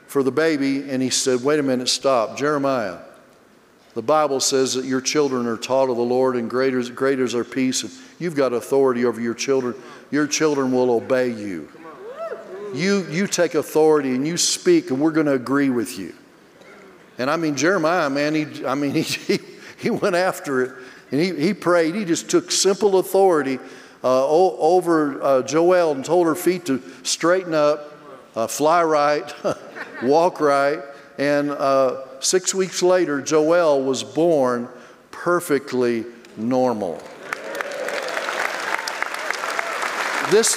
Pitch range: 130-180 Hz